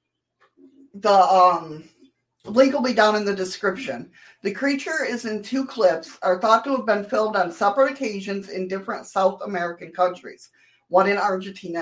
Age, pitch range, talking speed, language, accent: 50-69, 180-230 Hz, 160 wpm, English, American